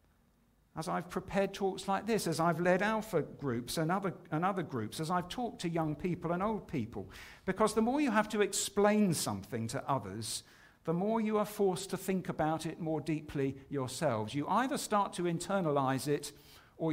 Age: 50-69